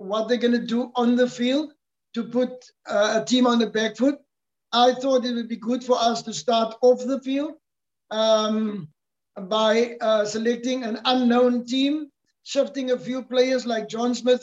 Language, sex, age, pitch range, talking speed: English, male, 60-79, 235-270 Hz, 180 wpm